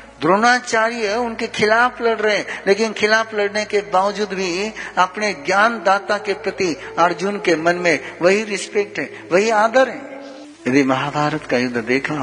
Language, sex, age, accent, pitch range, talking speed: Hindi, male, 60-79, native, 130-190 Hz, 155 wpm